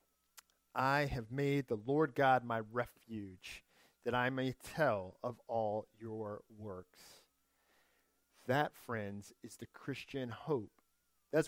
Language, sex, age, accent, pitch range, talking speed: English, male, 40-59, American, 115-165 Hz, 120 wpm